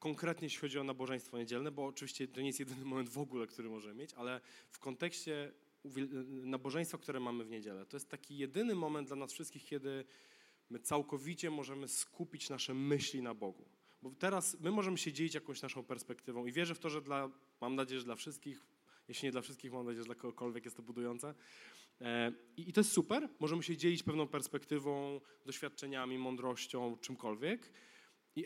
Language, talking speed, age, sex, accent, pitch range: Polish, 185 wpm, 20-39, male, native, 130-165 Hz